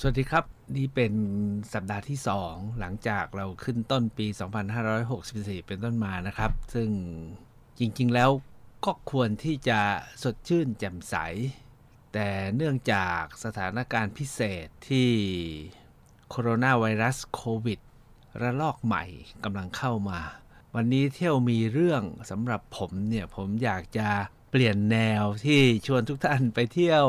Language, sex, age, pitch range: Thai, male, 60-79, 100-130 Hz